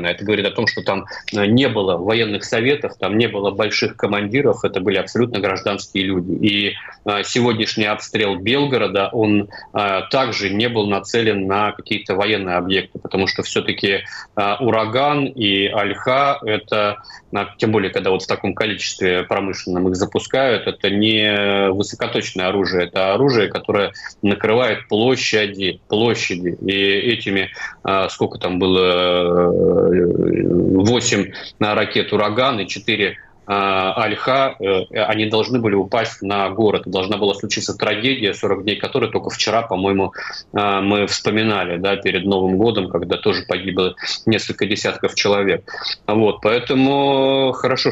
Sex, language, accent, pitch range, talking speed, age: male, Russian, native, 95-110 Hz, 125 wpm, 30-49